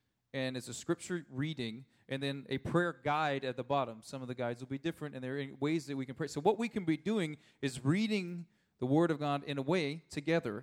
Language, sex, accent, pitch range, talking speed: English, male, American, 130-160 Hz, 250 wpm